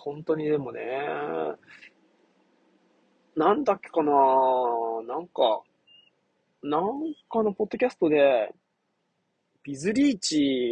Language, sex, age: Japanese, male, 20-39